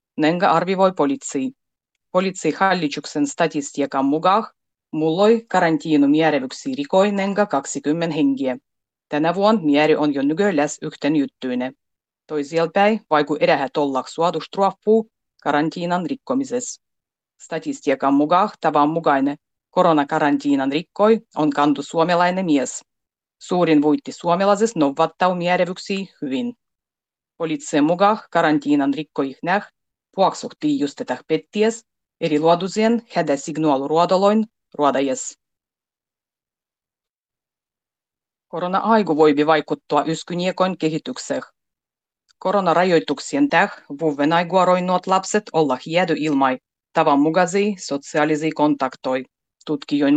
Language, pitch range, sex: Finnish, 145-190 Hz, female